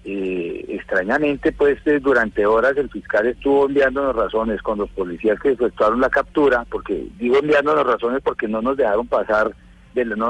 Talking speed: 170 wpm